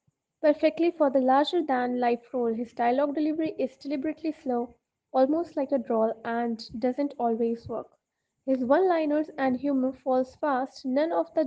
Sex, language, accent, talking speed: female, English, Indian, 145 wpm